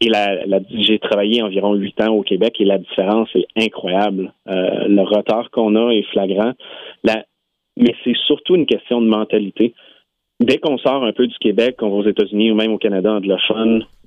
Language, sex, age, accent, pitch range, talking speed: French, male, 30-49, Canadian, 100-120 Hz, 195 wpm